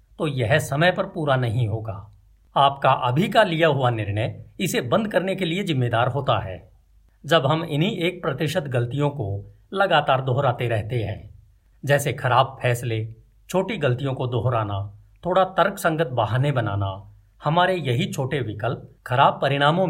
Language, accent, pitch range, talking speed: Hindi, native, 110-165 Hz, 150 wpm